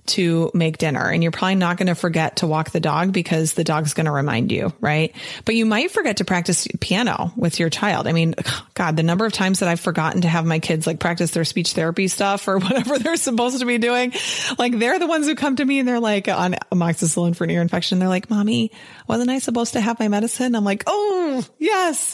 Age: 30-49